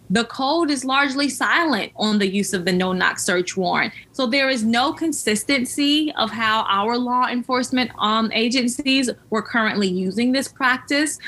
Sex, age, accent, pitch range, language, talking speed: female, 20-39, American, 215-280 Hz, English, 160 wpm